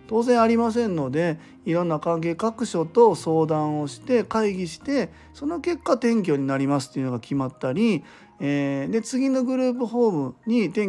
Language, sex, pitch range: Japanese, male, 135-205 Hz